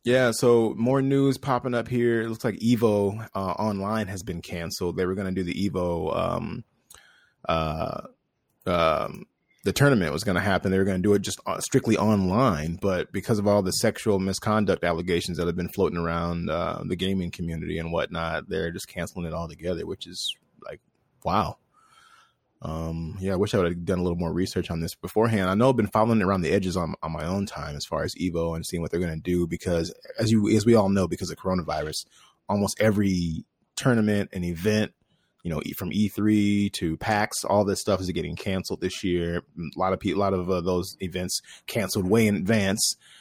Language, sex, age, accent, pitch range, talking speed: English, male, 20-39, American, 85-105 Hz, 210 wpm